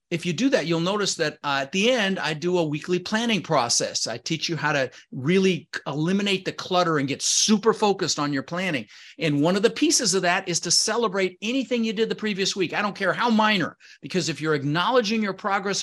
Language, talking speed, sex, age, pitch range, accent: English, 230 wpm, male, 40-59, 130-180 Hz, American